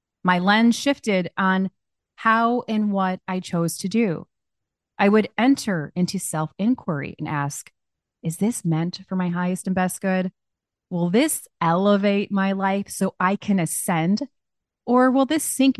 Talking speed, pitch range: 150 wpm, 165-210 Hz